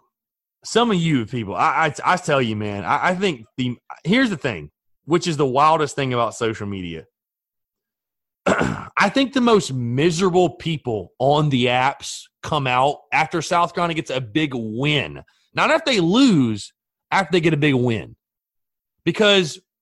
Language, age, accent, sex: English, 30-49, American, male